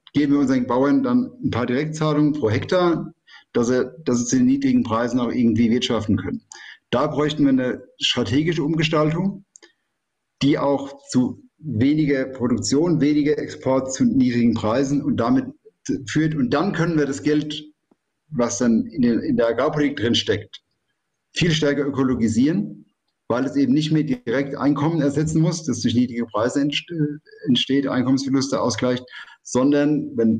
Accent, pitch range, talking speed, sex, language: German, 120-155 Hz, 145 wpm, male, German